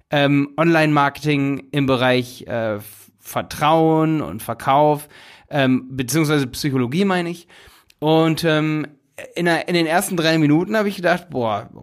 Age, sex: 30-49, male